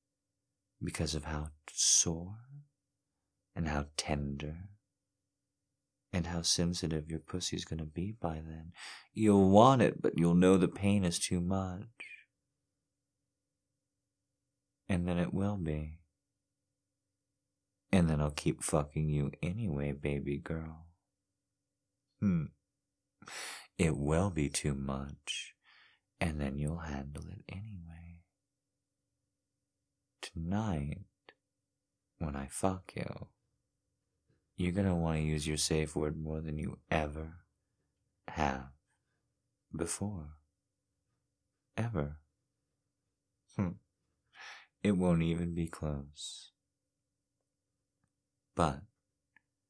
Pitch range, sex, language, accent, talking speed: 75-100 Hz, male, English, American, 100 wpm